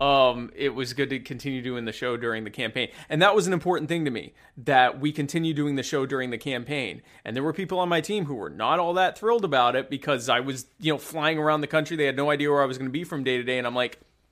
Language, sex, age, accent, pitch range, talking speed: English, male, 30-49, American, 110-140 Hz, 295 wpm